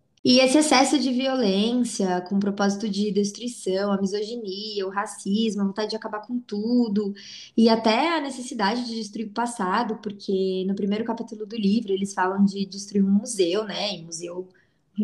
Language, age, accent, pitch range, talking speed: Portuguese, 20-39, Brazilian, 195-245 Hz, 180 wpm